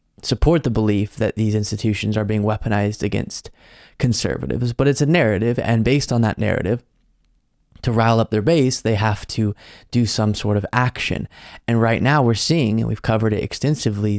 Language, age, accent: English, 20-39, American